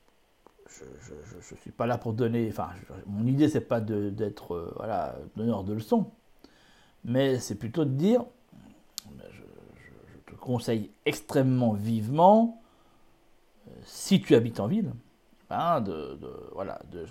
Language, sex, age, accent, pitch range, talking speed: French, male, 60-79, French, 120-180 Hz, 135 wpm